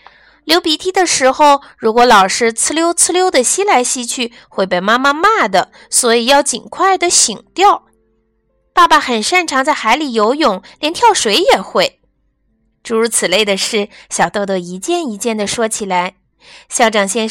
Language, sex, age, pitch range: Chinese, female, 20-39, 210-310 Hz